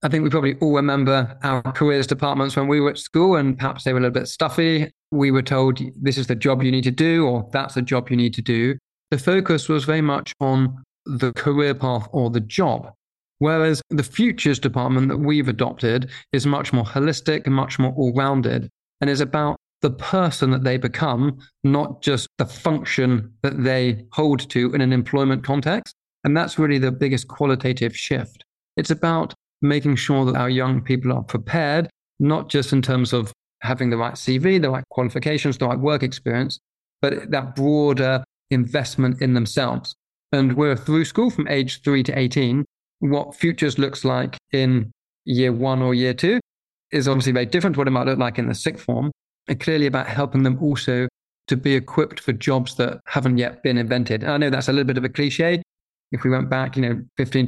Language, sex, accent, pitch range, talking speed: English, male, British, 130-145 Hz, 200 wpm